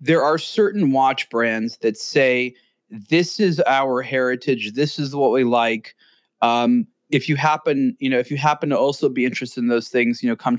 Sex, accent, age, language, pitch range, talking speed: male, American, 30-49, English, 135-180 Hz, 200 wpm